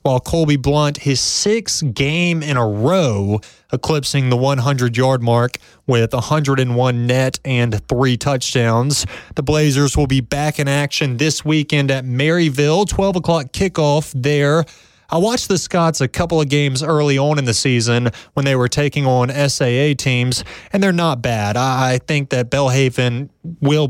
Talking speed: 160 wpm